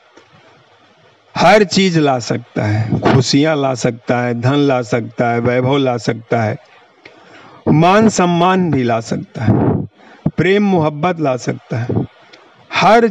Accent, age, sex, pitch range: native, 50-69, male, 140-205 Hz